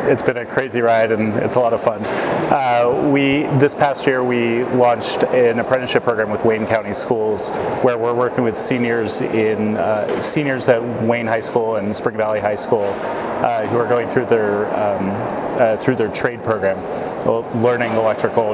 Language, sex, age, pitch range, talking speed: English, male, 30-49, 110-125 Hz, 185 wpm